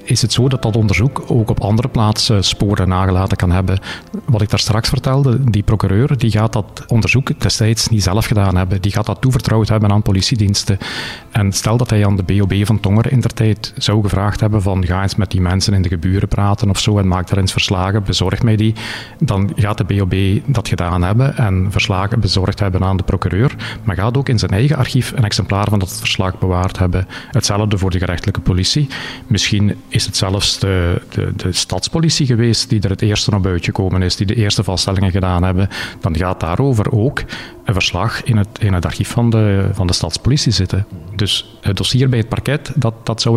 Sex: male